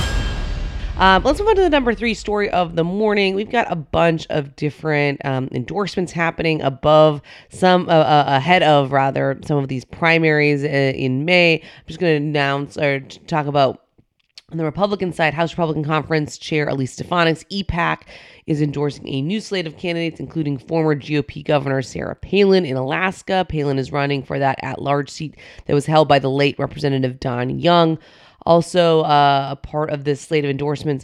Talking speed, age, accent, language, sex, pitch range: 180 wpm, 30-49, American, English, female, 140-175 Hz